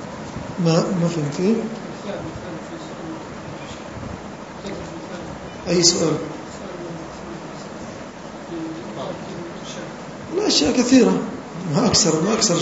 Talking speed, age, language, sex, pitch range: 55 wpm, 40-59, English, male, 160-195 Hz